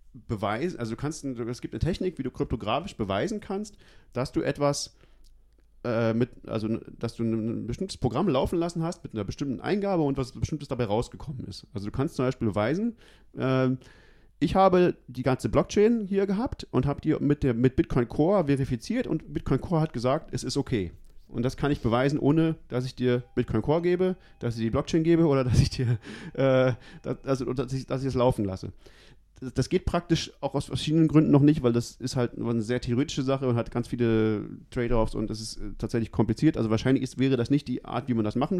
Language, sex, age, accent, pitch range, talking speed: German, male, 40-59, German, 115-150 Hz, 215 wpm